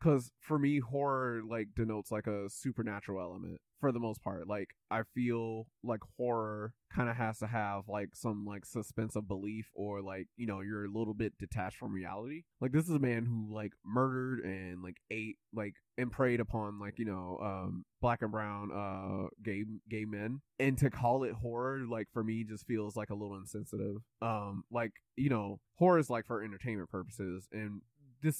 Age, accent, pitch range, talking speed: 20-39, American, 100-120 Hz, 195 wpm